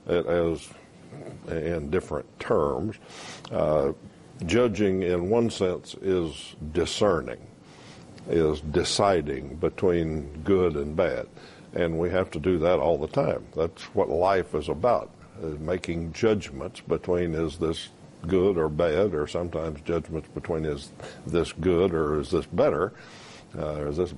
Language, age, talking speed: English, 60-79, 130 wpm